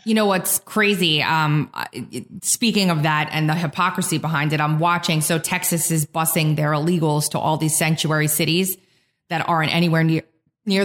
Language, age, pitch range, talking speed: English, 20-39, 165-205 Hz, 170 wpm